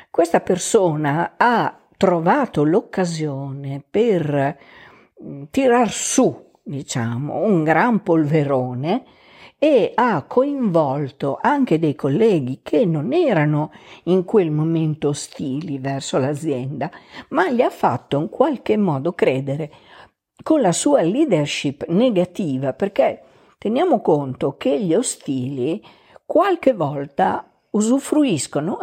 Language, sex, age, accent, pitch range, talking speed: Italian, female, 50-69, native, 145-230 Hz, 100 wpm